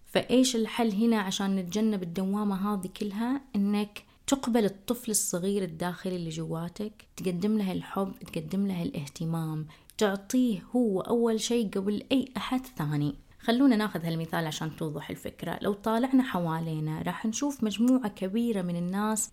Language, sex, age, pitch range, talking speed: Arabic, female, 20-39, 175-220 Hz, 135 wpm